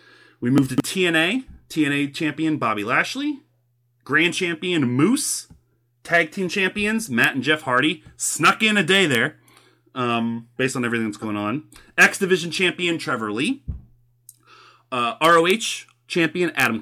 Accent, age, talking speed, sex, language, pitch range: American, 30-49, 140 wpm, male, English, 130-200 Hz